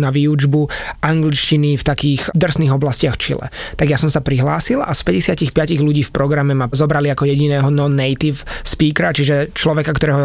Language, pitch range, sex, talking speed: Slovak, 145-165 Hz, male, 170 wpm